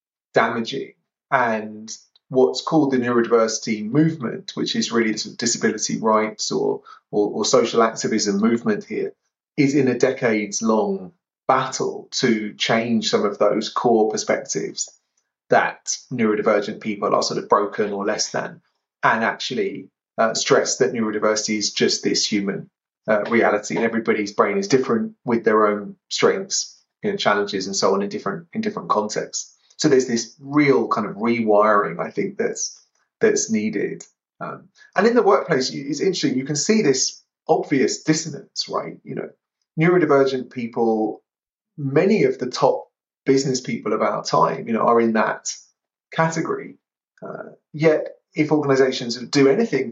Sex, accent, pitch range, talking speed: male, British, 110-155 Hz, 155 wpm